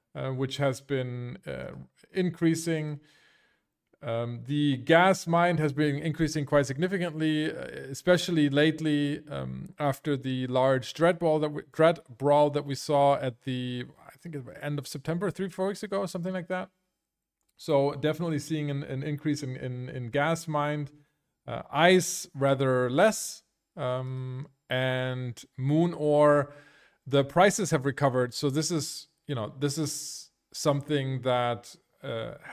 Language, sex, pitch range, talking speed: English, male, 125-155 Hz, 150 wpm